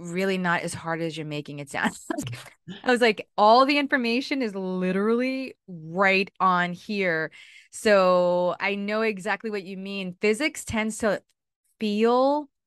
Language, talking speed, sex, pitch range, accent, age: English, 145 wpm, female, 185-235 Hz, American, 20-39